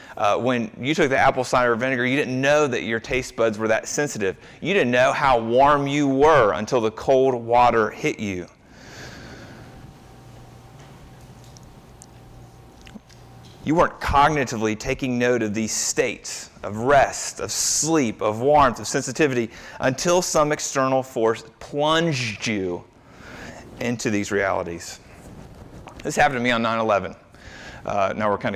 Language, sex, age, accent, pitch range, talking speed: English, male, 30-49, American, 100-130 Hz, 140 wpm